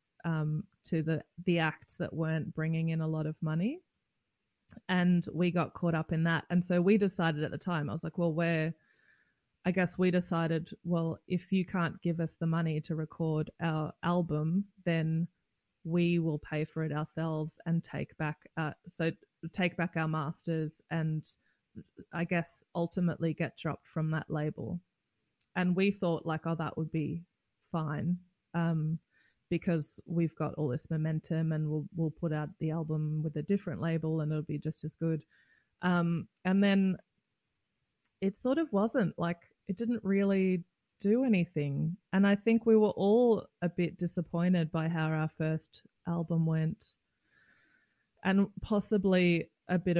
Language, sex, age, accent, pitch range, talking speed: English, female, 20-39, Australian, 155-180 Hz, 165 wpm